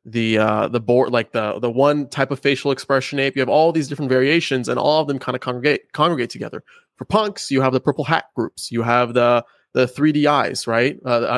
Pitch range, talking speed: 120-150 Hz, 230 wpm